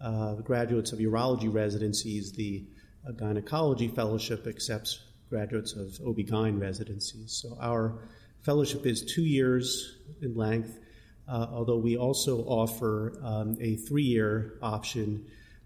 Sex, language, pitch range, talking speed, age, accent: male, English, 105-120 Hz, 125 wpm, 40-59, American